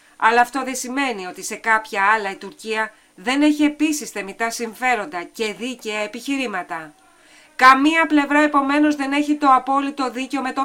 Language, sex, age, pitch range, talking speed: Greek, female, 30-49, 210-255 Hz, 160 wpm